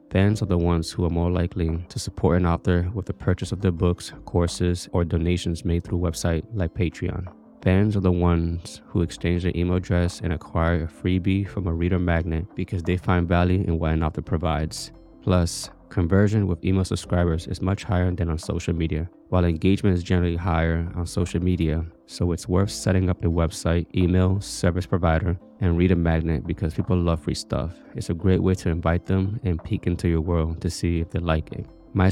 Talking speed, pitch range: 205 wpm, 85-95 Hz